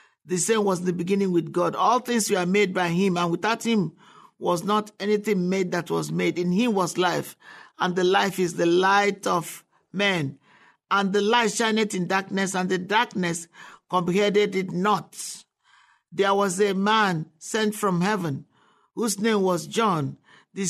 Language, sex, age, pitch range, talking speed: English, male, 50-69, 180-210 Hz, 170 wpm